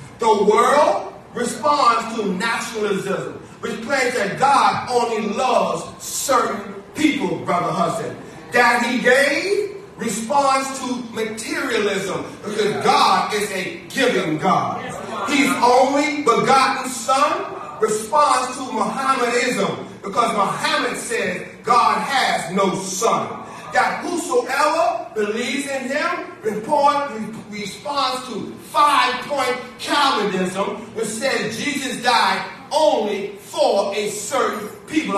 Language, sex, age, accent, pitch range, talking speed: English, male, 40-59, American, 215-275 Hz, 105 wpm